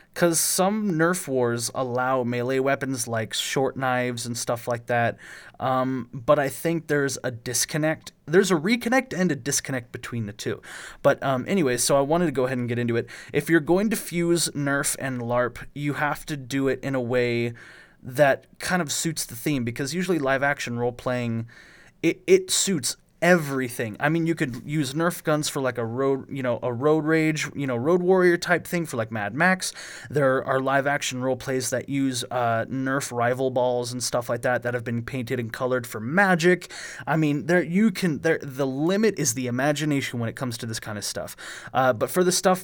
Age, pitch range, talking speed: 20-39, 125-165 Hz, 205 wpm